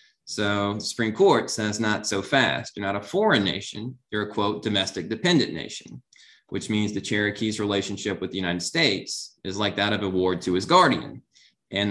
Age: 20-39